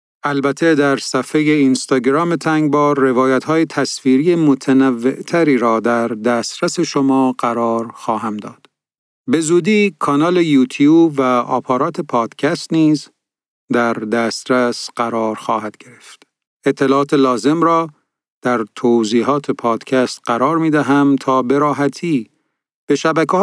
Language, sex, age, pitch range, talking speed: Persian, male, 40-59, 120-150 Hz, 105 wpm